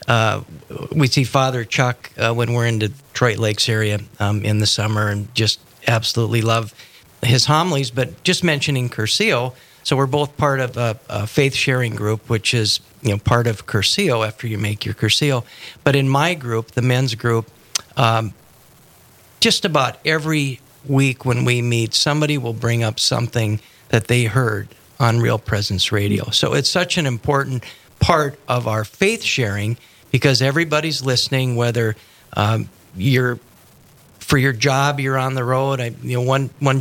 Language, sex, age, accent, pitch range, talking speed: English, male, 50-69, American, 115-140 Hz, 165 wpm